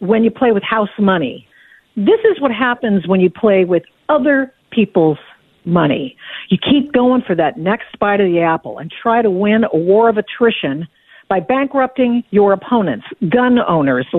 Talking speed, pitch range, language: 175 wpm, 185-240 Hz, English